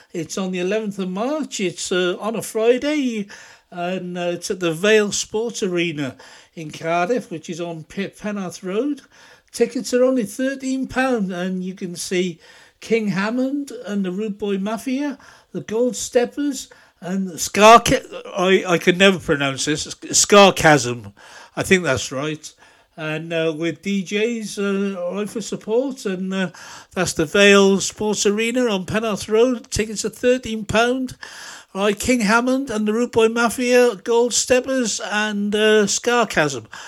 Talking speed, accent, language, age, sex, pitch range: 150 wpm, British, English, 60-79, male, 170-230 Hz